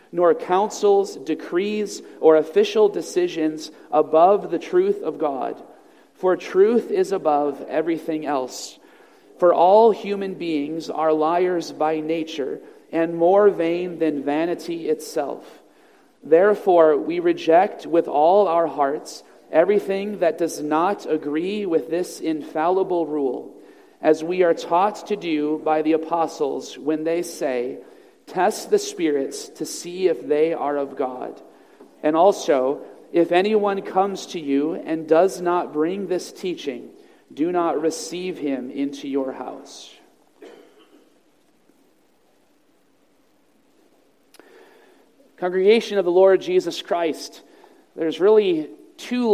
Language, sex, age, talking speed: English, male, 40-59, 120 wpm